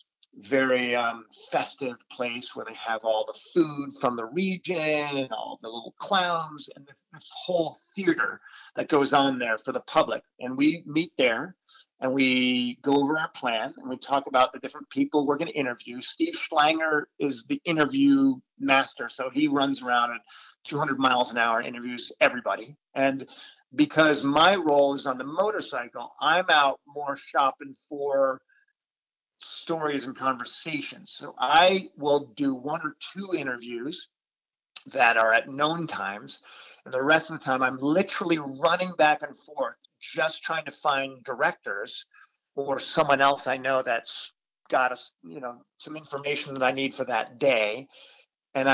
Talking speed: 165 wpm